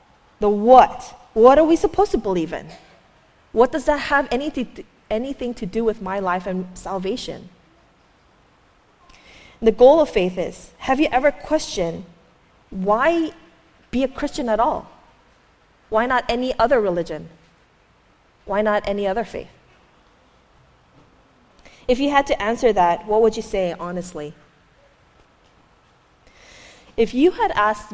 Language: English